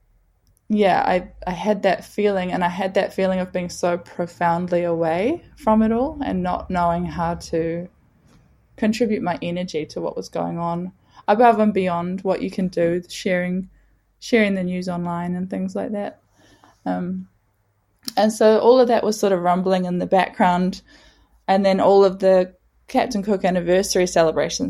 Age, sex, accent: 20-39, female, Australian